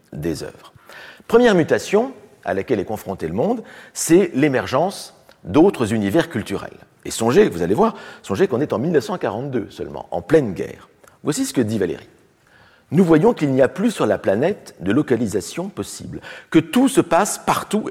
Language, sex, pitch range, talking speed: French, male, 110-180 Hz, 170 wpm